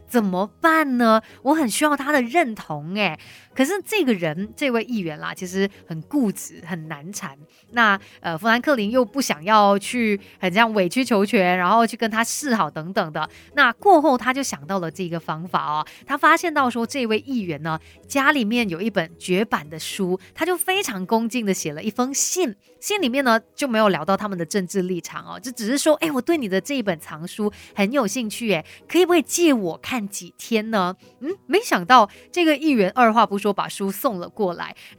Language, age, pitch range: Chinese, 30-49, 190-270 Hz